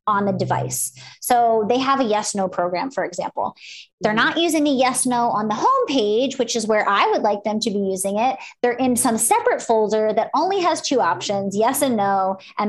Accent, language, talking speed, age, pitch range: American, English, 220 wpm, 20-39, 210-270 Hz